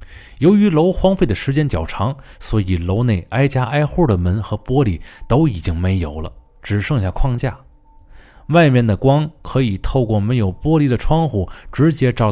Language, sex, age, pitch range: Chinese, male, 20-39, 90-135 Hz